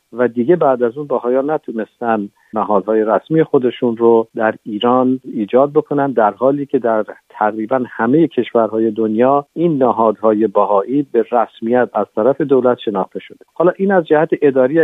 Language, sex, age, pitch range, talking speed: Persian, male, 50-69, 110-135 Hz, 155 wpm